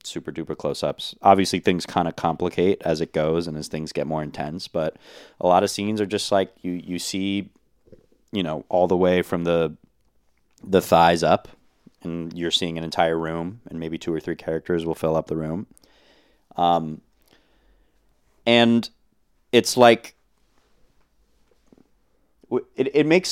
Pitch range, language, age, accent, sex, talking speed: 80-95 Hz, English, 30-49, American, male, 160 wpm